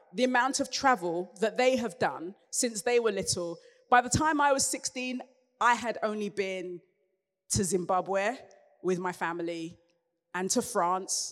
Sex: female